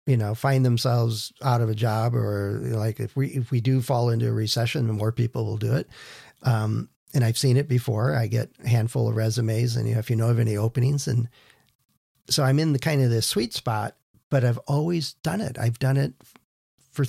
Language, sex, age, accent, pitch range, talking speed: English, male, 50-69, American, 115-140 Hz, 230 wpm